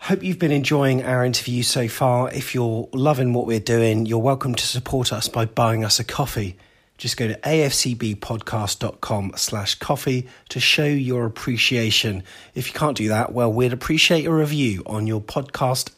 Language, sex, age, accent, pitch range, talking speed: English, male, 30-49, British, 110-145 Hz, 175 wpm